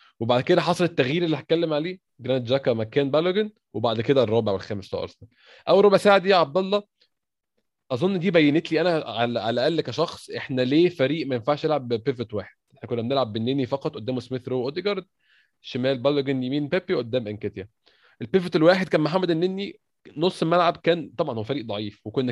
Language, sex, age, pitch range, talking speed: Arabic, male, 20-39, 120-165 Hz, 175 wpm